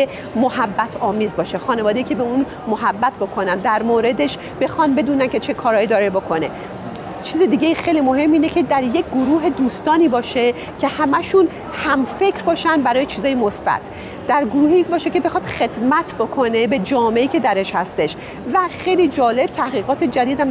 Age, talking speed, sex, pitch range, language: 40-59, 160 wpm, female, 240-300 Hz, Persian